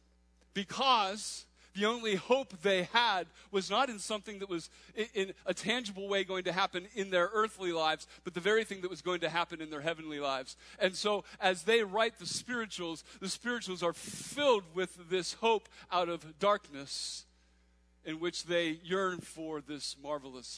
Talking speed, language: 175 wpm, English